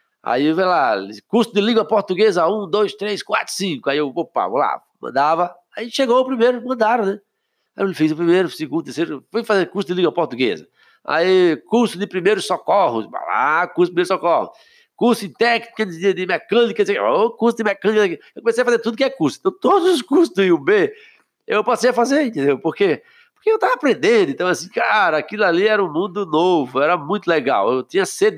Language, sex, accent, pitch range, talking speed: Portuguese, male, Brazilian, 170-245 Hz, 205 wpm